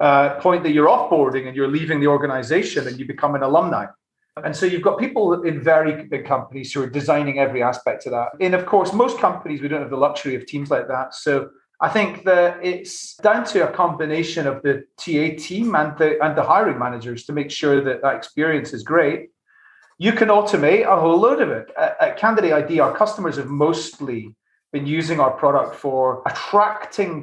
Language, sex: English, male